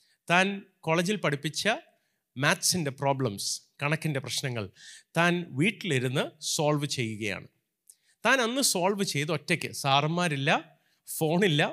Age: 30-49